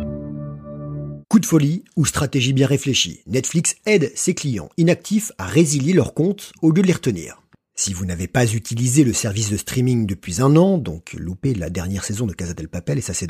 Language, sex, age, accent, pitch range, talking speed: French, male, 40-59, French, 100-155 Hz, 205 wpm